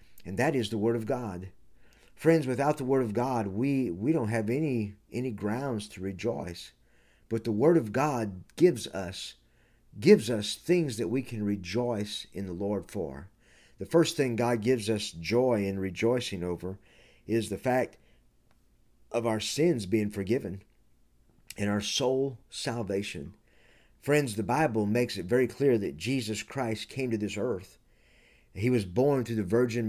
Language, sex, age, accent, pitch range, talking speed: English, male, 50-69, American, 105-135 Hz, 165 wpm